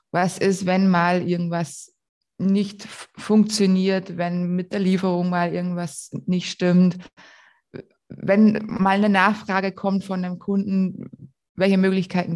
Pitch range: 180-205 Hz